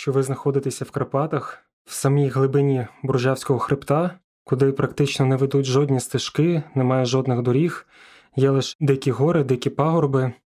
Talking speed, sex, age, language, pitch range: 145 wpm, male, 20-39, Ukrainian, 130-150 Hz